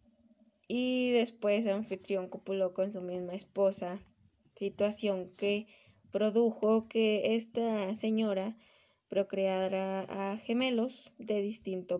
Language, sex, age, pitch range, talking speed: Spanish, female, 20-39, 190-220 Hz, 95 wpm